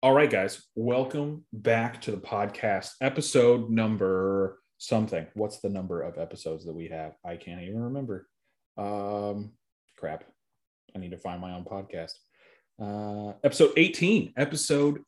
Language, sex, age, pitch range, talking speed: English, male, 30-49, 105-135 Hz, 145 wpm